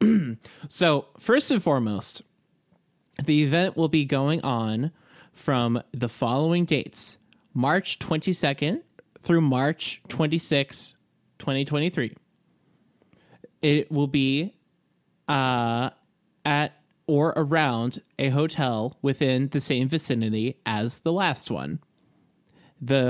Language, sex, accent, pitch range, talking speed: English, male, American, 120-160 Hz, 100 wpm